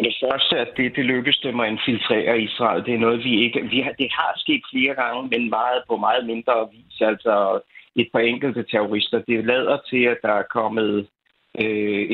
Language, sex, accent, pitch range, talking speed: Danish, male, native, 105-120 Hz, 210 wpm